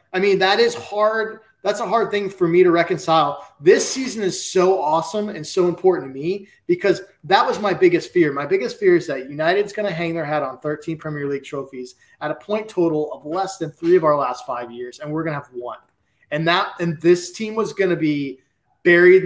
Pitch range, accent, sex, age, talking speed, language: 145-185 Hz, American, male, 20-39, 230 wpm, English